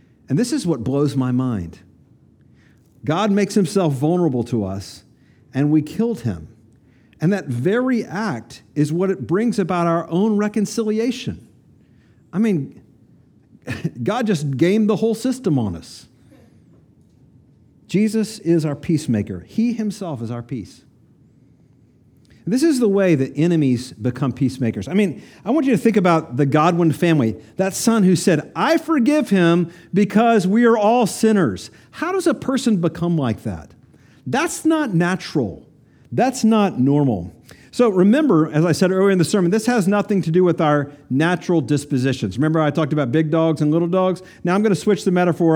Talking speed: 165 wpm